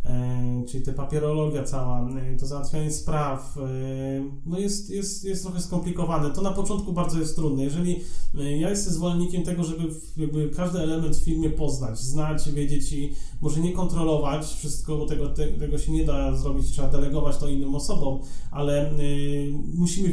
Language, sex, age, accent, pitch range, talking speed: Polish, male, 30-49, native, 135-160 Hz, 150 wpm